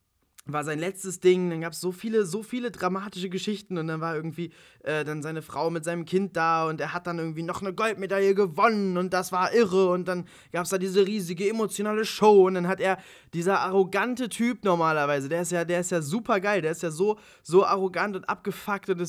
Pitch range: 160-195 Hz